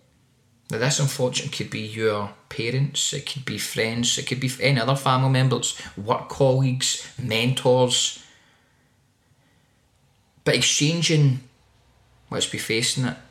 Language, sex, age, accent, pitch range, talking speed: English, male, 20-39, British, 110-135 Hz, 120 wpm